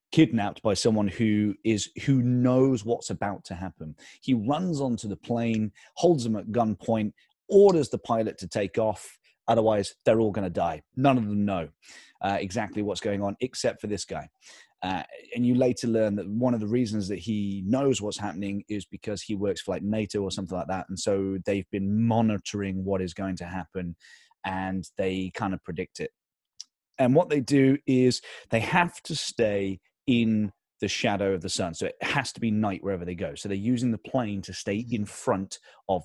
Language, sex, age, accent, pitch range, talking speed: English, male, 30-49, British, 100-125 Hz, 200 wpm